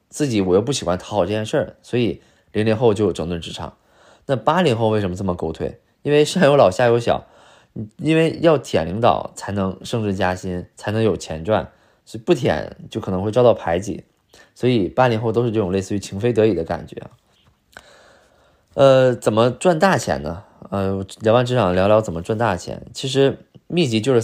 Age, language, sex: 20-39, Chinese, male